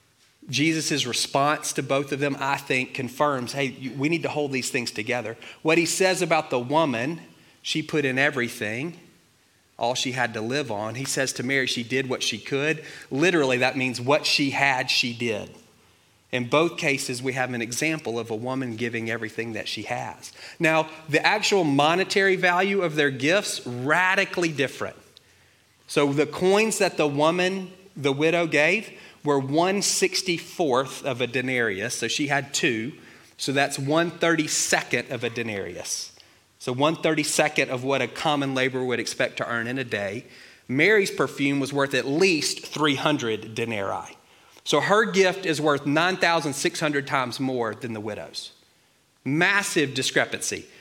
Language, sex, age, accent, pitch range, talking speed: English, male, 30-49, American, 125-160 Hz, 160 wpm